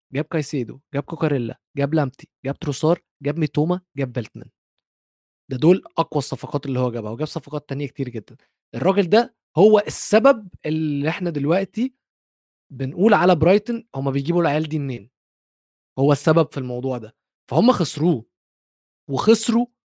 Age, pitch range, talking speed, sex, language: 20-39, 135-175 Hz, 145 wpm, male, Arabic